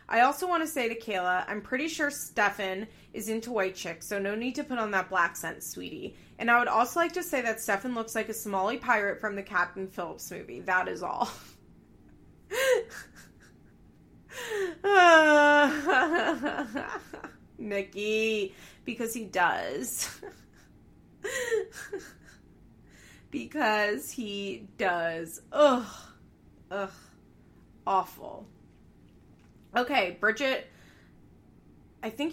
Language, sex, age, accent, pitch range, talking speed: English, female, 20-39, American, 195-270 Hz, 115 wpm